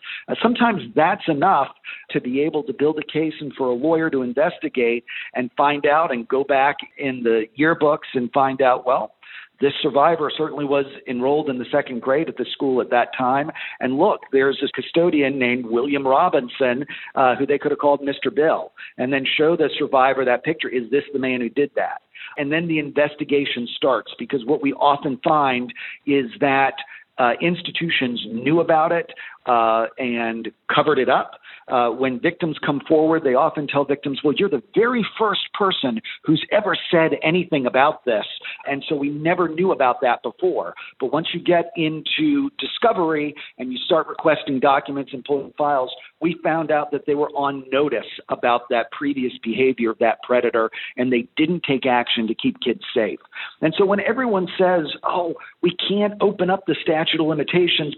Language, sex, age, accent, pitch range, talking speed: English, male, 50-69, American, 130-165 Hz, 185 wpm